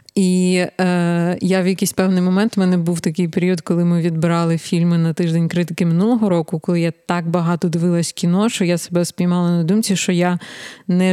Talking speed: 195 wpm